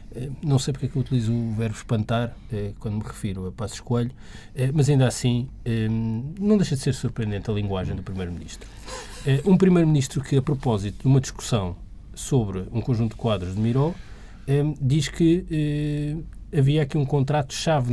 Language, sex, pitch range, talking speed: Portuguese, male, 110-140 Hz, 185 wpm